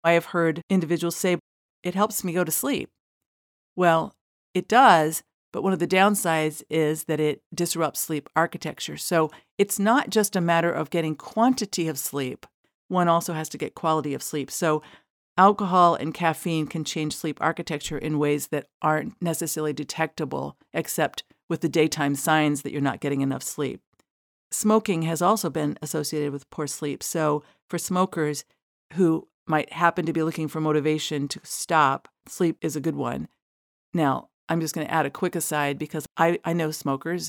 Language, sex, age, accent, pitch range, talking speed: English, female, 50-69, American, 150-170 Hz, 175 wpm